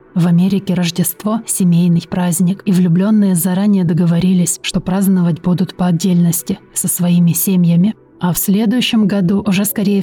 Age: 20-39